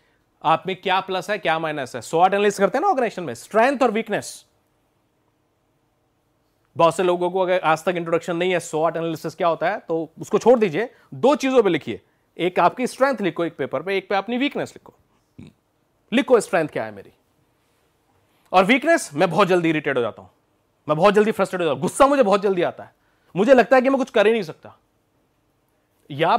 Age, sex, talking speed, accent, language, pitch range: 30-49, male, 170 wpm, native, Hindi, 155-225 Hz